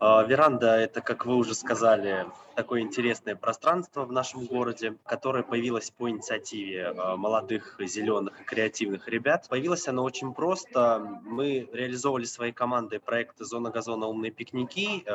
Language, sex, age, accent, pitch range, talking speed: Russian, male, 20-39, native, 110-130 Hz, 135 wpm